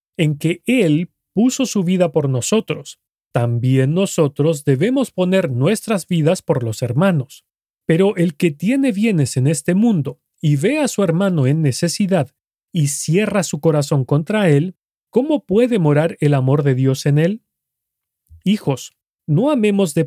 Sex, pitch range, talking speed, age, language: male, 140-195 Hz, 150 wpm, 40-59, Spanish